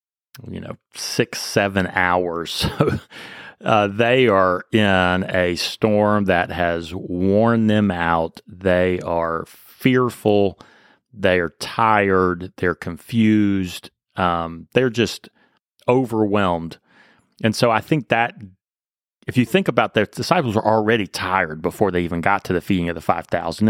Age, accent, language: 30-49, American, English